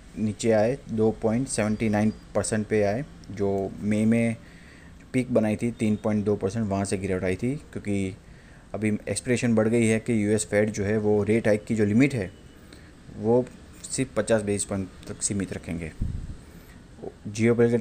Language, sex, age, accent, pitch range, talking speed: English, male, 20-39, Indian, 100-110 Hz, 150 wpm